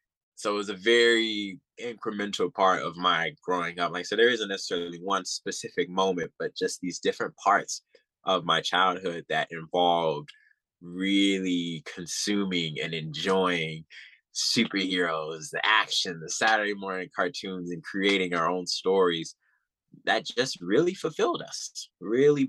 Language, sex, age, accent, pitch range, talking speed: English, male, 20-39, American, 85-100 Hz, 135 wpm